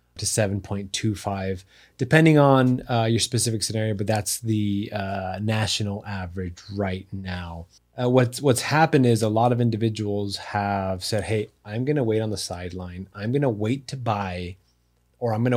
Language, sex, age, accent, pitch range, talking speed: English, male, 30-49, American, 100-120 Hz, 170 wpm